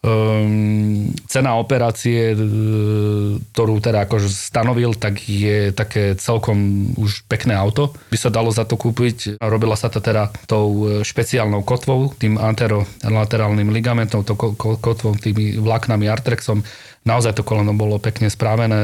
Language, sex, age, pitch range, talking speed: Slovak, male, 30-49, 105-115 Hz, 135 wpm